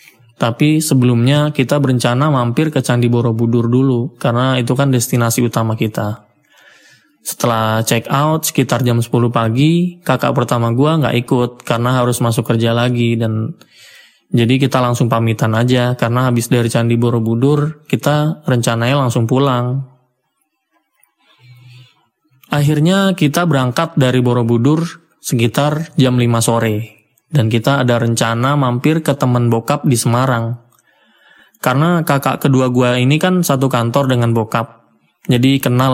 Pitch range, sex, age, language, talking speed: 120-140 Hz, male, 20-39, Indonesian, 130 wpm